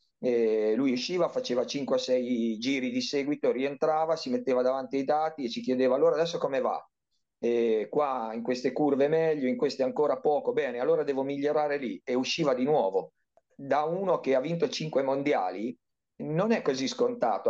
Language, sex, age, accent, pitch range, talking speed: Italian, male, 40-59, native, 130-160 Hz, 175 wpm